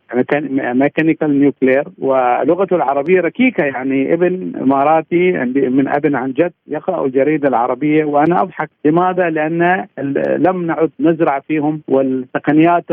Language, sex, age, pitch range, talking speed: Arabic, male, 50-69, 135-165 Hz, 110 wpm